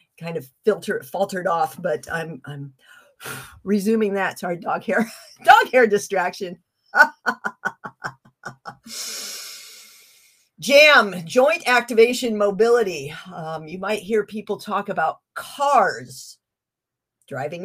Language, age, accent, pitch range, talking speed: English, 50-69, American, 185-265 Hz, 100 wpm